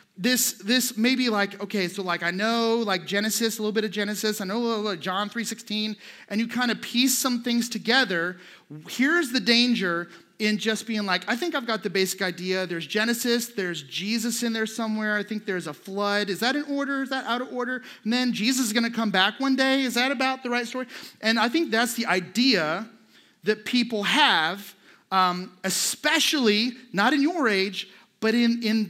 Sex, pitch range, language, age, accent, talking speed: male, 180-235 Hz, English, 30-49, American, 210 wpm